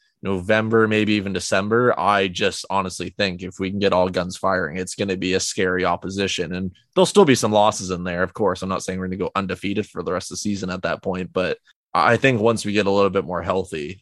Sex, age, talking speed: male, 20-39, 255 wpm